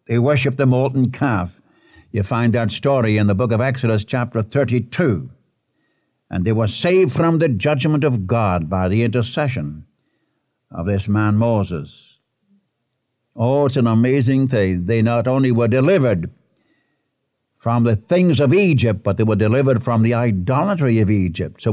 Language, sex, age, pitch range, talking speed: English, male, 60-79, 110-145 Hz, 155 wpm